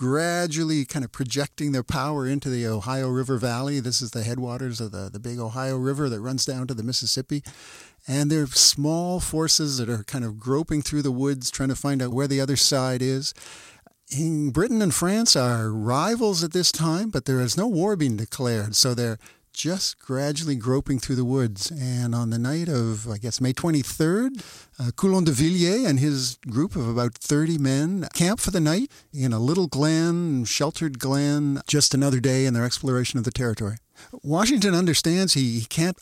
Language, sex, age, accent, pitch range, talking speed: English, male, 50-69, American, 125-160 Hz, 190 wpm